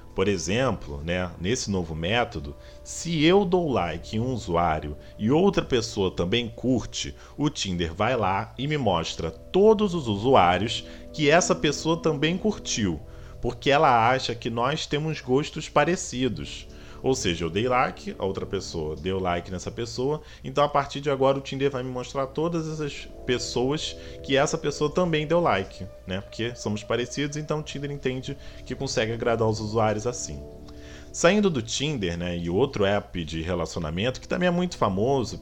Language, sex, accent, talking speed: Portuguese, male, Brazilian, 170 wpm